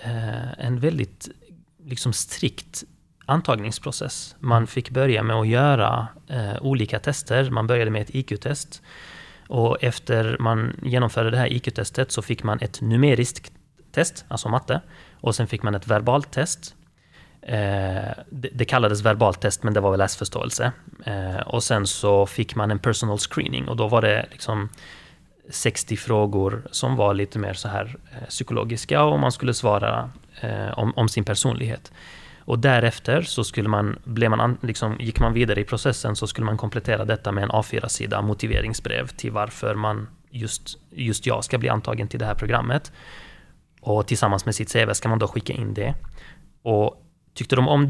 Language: Swedish